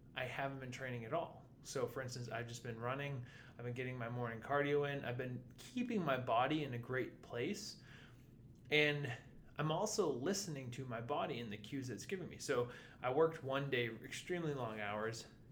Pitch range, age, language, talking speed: 115-140 Hz, 20-39, English, 195 wpm